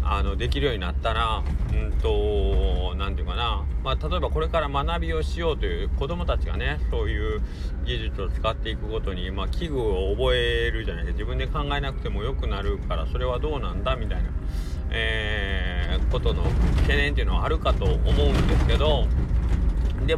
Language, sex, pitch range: Japanese, male, 65-80 Hz